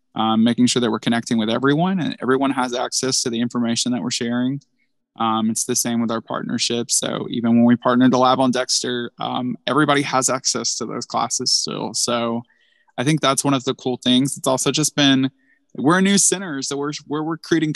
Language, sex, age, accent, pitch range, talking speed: English, male, 20-39, American, 120-140 Hz, 215 wpm